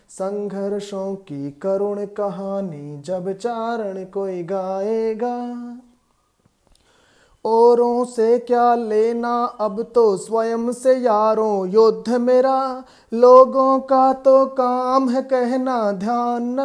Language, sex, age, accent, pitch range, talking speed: Hindi, male, 20-39, native, 180-240 Hz, 95 wpm